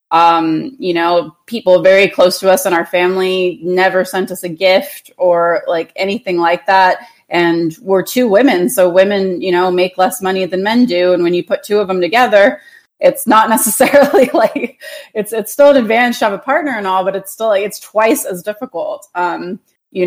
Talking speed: 205 wpm